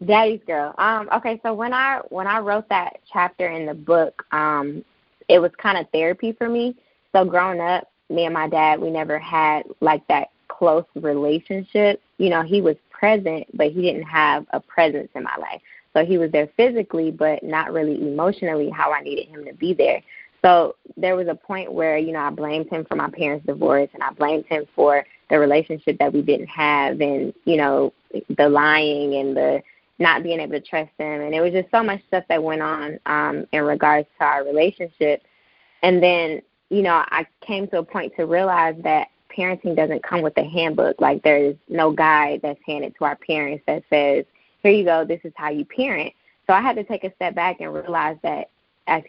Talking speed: 210 wpm